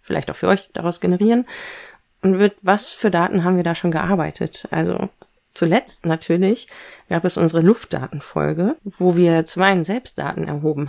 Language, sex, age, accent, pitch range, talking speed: German, female, 30-49, German, 155-190 Hz, 150 wpm